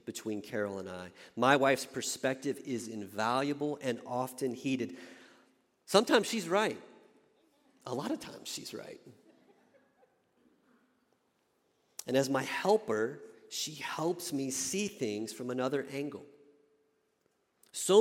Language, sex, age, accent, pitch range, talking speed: English, male, 40-59, American, 130-190 Hz, 115 wpm